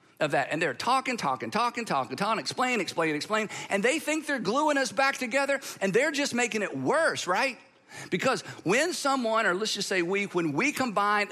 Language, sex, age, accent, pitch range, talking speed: English, male, 50-69, American, 190-250 Hz, 200 wpm